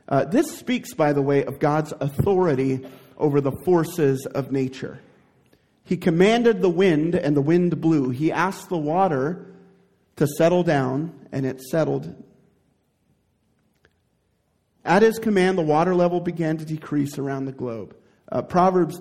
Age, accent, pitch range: 40-59, American, 140-180 Hz